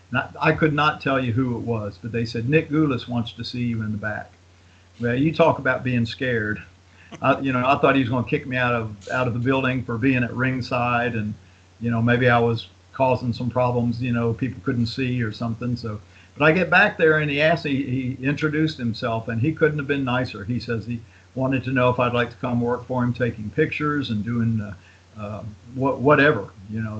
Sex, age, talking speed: male, 50-69, 235 wpm